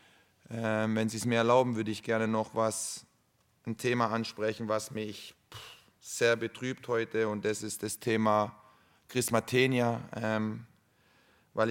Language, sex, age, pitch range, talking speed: German, male, 30-49, 110-125 Hz, 135 wpm